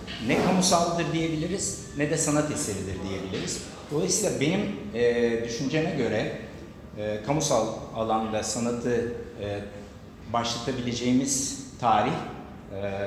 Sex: male